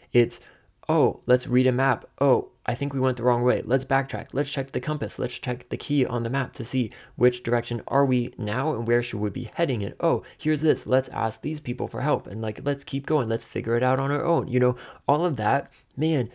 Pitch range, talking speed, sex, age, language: 110-130 Hz, 250 wpm, male, 20-39, English